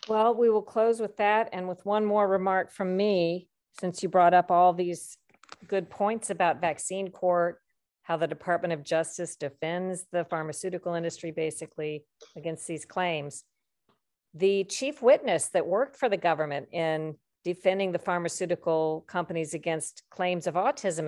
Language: English